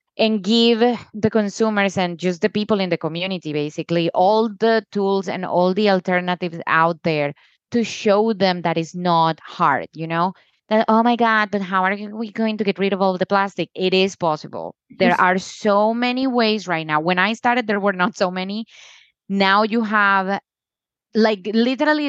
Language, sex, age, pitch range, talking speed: English, female, 20-39, 175-220 Hz, 185 wpm